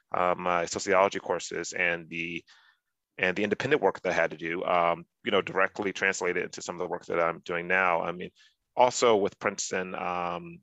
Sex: male